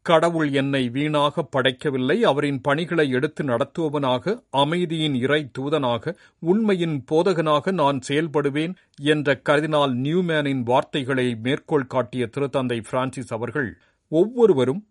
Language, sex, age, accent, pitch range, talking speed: Tamil, male, 50-69, native, 125-155 Hz, 95 wpm